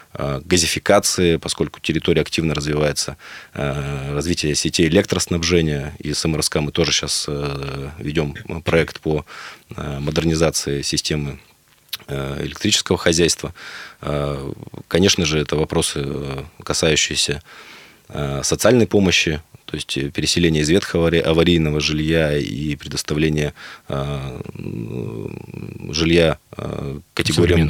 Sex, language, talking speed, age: male, Russian, 85 wpm, 20-39